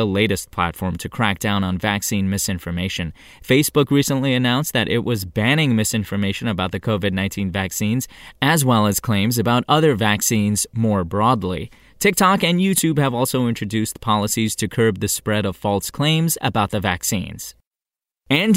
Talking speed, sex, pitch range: 150 wpm, male, 105-145 Hz